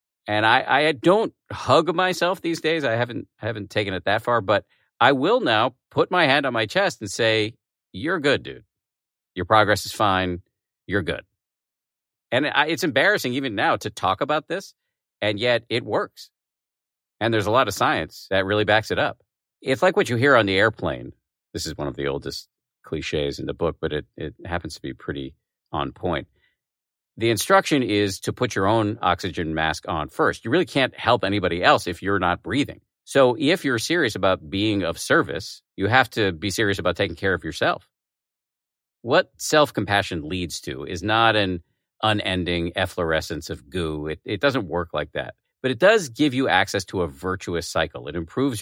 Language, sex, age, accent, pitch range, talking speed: English, male, 50-69, American, 90-125 Hz, 195 wpm